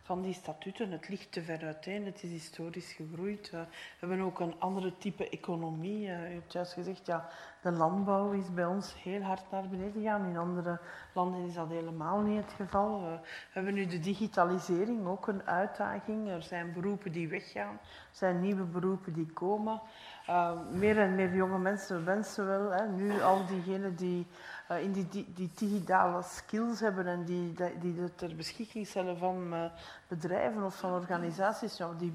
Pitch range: 175-205 Hz